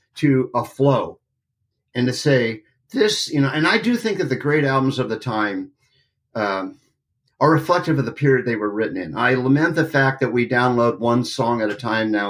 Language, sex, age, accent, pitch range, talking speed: English, male, 50-69, American, 120-145 Hz, 210 wpm